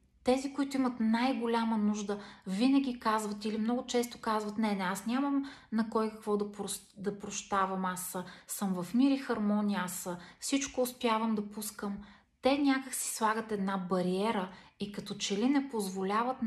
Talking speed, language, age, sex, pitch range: 165 wpm, Bulgarian, 20-39, female, 195-230 Hz